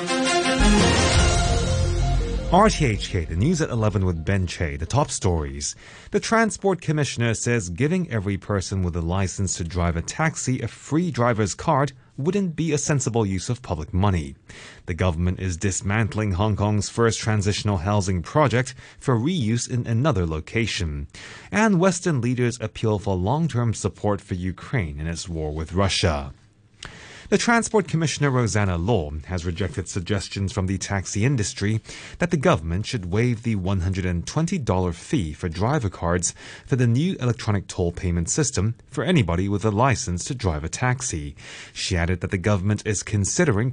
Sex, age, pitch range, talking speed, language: male, 30-49, 95-165 Hz, 155 wpm, English